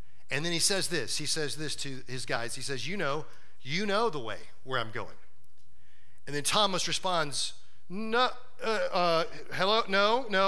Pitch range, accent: 125-200 Hz, American